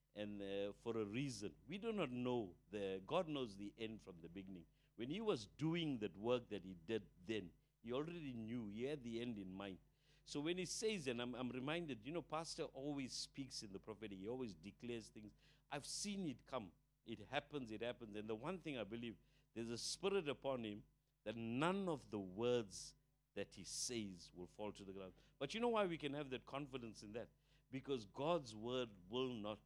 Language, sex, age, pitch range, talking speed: English, male, 60-79, 105-145 Hz, 210 wpm